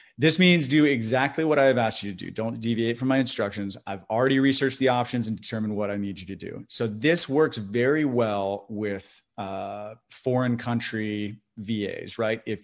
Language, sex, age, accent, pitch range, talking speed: English, male, 30-49, American, 105-130 Hz, 190 wpm